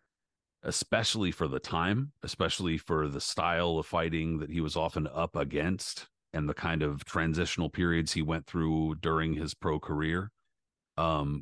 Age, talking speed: 40-59, 160 wpm